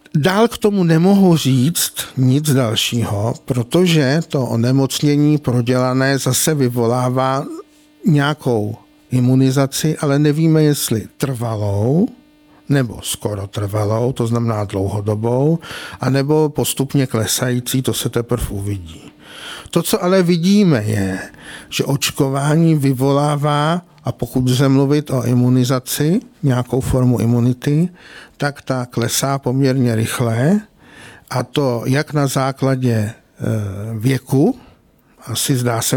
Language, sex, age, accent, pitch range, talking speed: Czech, male, 50-69, native, 120-145 Hz, 105 wpm